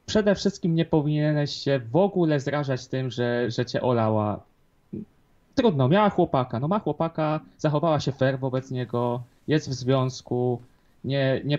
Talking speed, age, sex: 150 wpm, 20-39, male